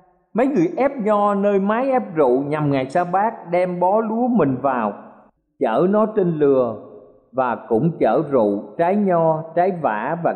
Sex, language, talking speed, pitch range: male, Vietnamese, 175 wpm, 145-210 Hz